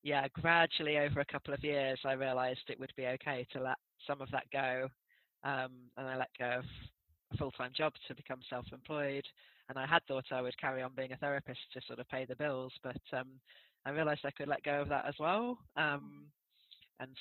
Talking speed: 215 wpm